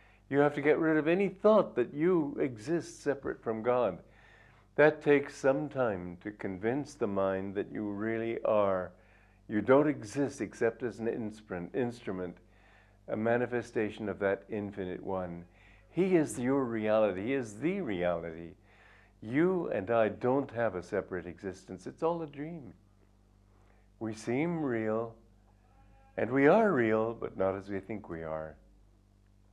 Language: English